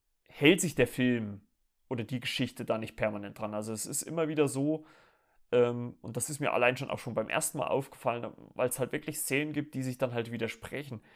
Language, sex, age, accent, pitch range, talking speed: German, male, 30-49, German, 110-130 Hz, 215 wpm